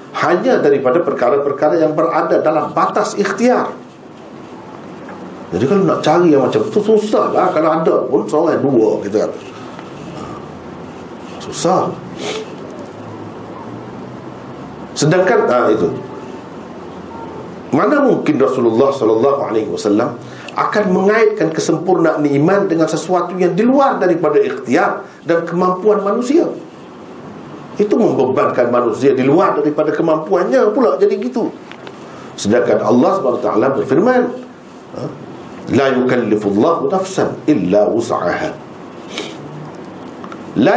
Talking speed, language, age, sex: 95 wpm, Malay, 50-69, male